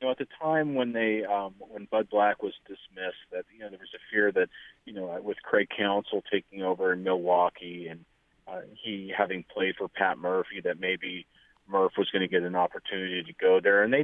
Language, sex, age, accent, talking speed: English, male, 30-49, American, 220 wpm